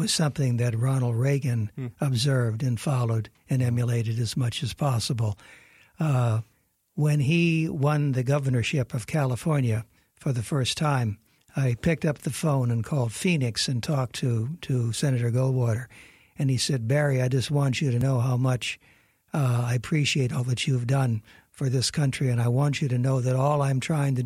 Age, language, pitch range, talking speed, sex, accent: 60-79, English, 120-145 Hz, 180 wpm, male, American